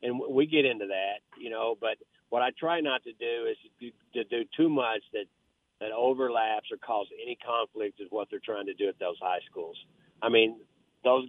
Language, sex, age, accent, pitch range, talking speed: English, male, 50-69, American, 105-130 Hz, 215 wpm